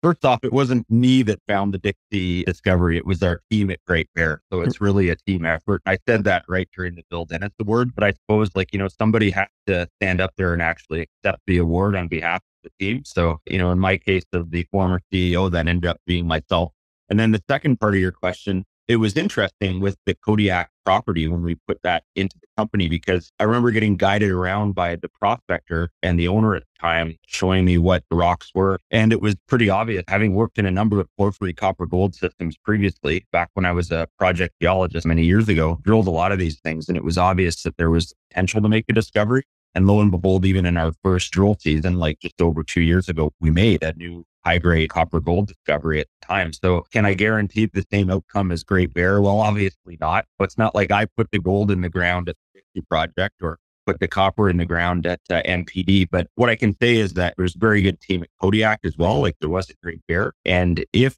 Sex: male